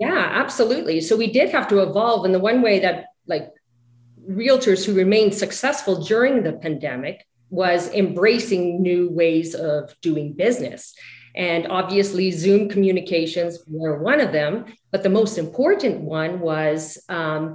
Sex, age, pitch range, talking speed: female, 40-59, 165-225 Hz, 145 wpm